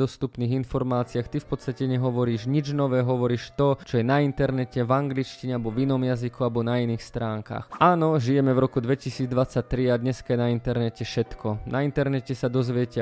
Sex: male